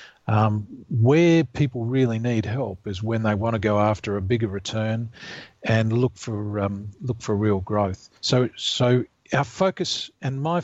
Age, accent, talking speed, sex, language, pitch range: 40-59, Australian, 170 wpm, male, English, 105-130 Hz